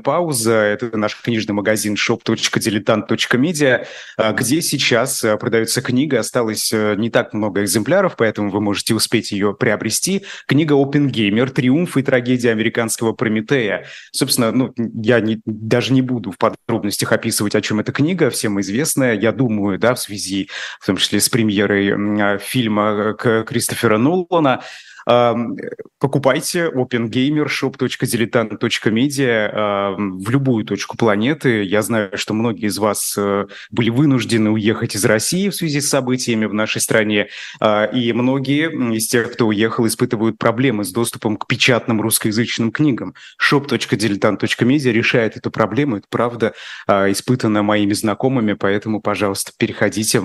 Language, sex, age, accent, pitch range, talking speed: Russian, male, 20-39, native, 105-125 Hz, 135 wpm